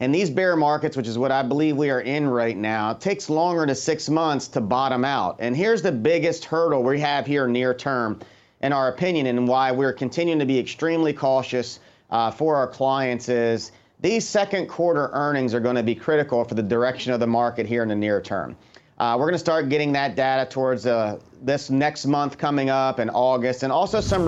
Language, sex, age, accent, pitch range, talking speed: English, male, 40-59, American, 125-155 Hz, 215 wpm